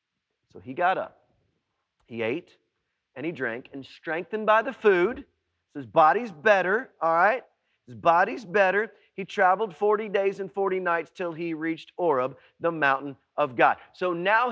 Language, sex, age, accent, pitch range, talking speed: English, male, 40-59, American, 185-235 Hz, 165 wpm